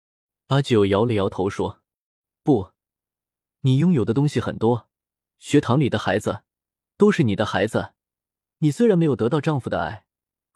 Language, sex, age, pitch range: Chinese, male, 20-39, 105-150 Hz